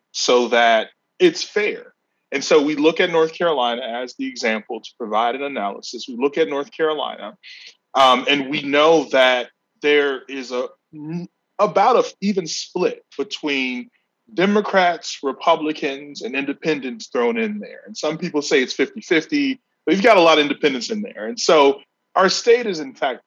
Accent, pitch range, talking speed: American, 130-195 Hz, 170 wpm